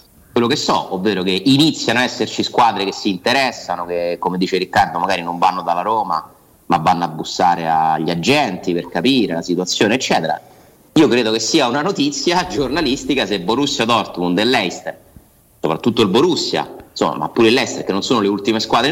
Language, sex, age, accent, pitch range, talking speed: Italian, male, 30-49, native, 100-150 Hz, 180 wpm